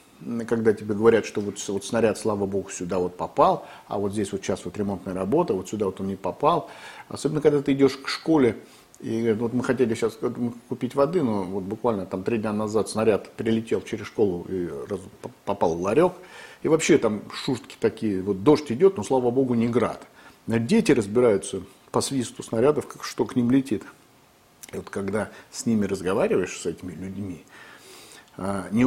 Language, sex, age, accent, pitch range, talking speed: Russian, male, 50-69, native, 95-120 Hz, 180 wpm